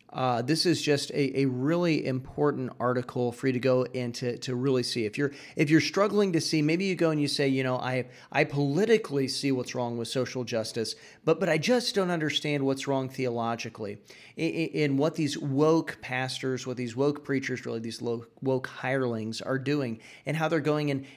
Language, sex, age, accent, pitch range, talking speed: English, male, 40-59, American, 125-145 Hz, 205 wpm